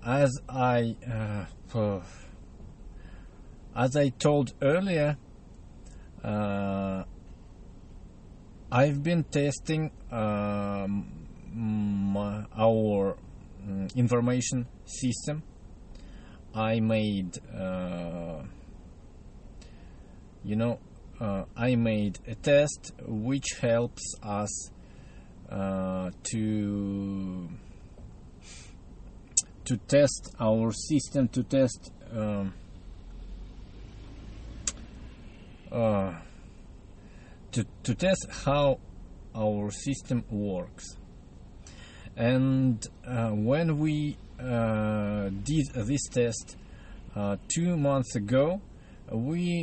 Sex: male